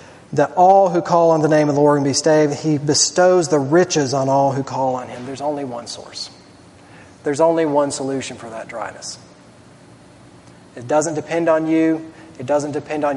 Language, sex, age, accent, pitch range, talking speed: English, male, 30-49, American, 135-160 Hz, 195 wpm